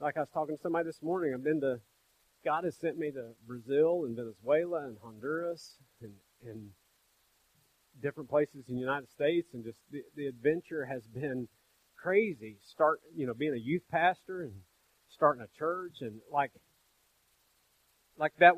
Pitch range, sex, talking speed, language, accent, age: 125-165 Hz, male, 170 wpm, English, American, 40-59